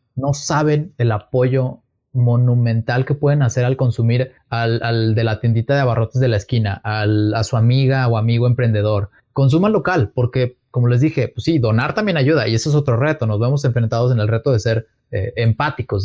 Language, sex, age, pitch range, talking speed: Spanish, male, 30-49, 115-145 Hz, 200 wpm